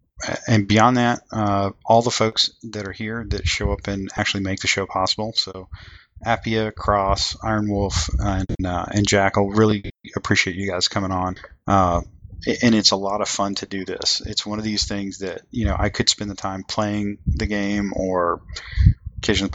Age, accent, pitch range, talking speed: 30-49, American, 95-105 Hz, 185 wpm